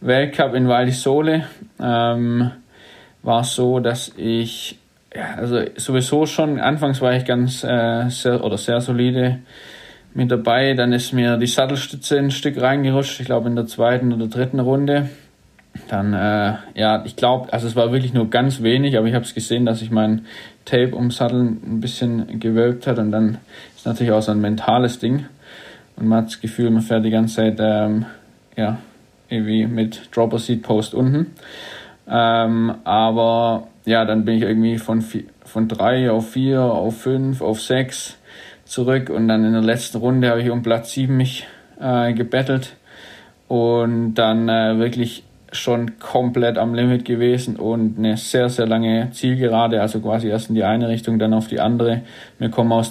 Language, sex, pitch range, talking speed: German, male, 110-125 Hz, 175 wpm